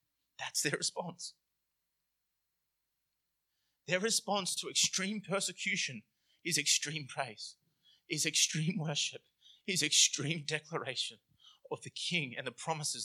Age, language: 20-39, English